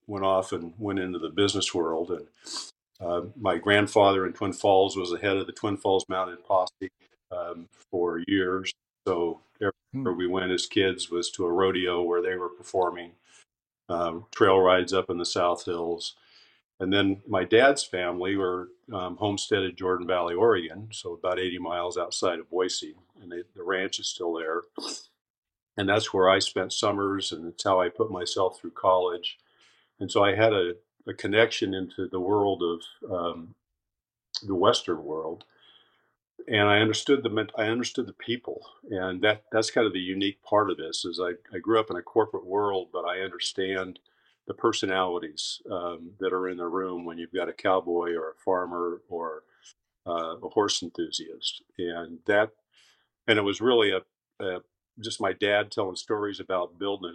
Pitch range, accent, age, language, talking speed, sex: 90-105 Hz, American, 50-69, English, 175 wpm, male